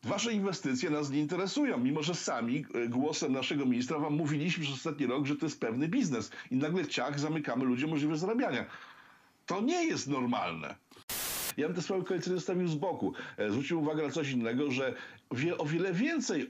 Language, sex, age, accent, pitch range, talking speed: Polish, male, 50-69, native, 125-160 Hz, 180 wpm